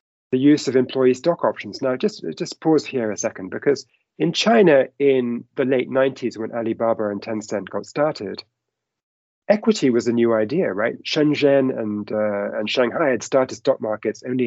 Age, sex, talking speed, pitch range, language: 30-49, male, 170 wpm, 120-155 Hz, English